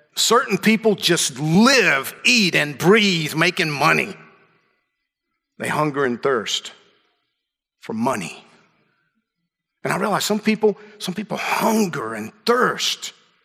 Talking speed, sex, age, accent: 110 wpm, male, 50-69, American